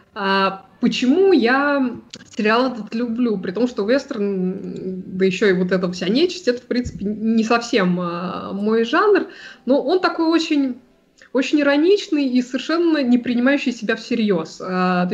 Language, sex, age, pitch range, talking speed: Russian, female, 20-39, 190-245 Hz, 150 wpm